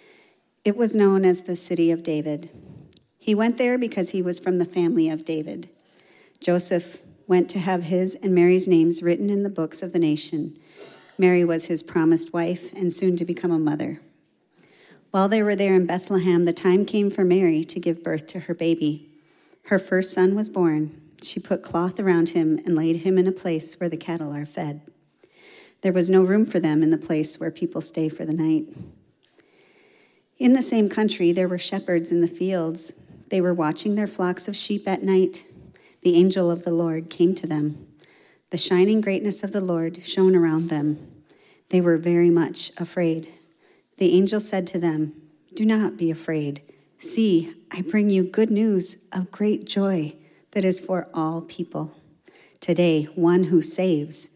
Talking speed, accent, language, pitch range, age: 185 wpm, American, English, 165-190 Hz, 40-59